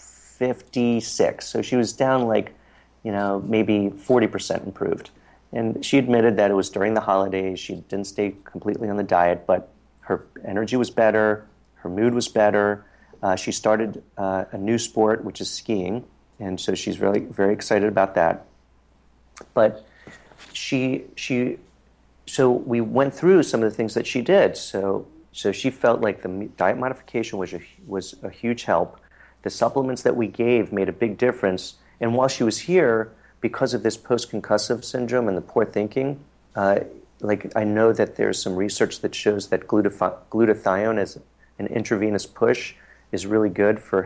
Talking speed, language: 170 wpm, English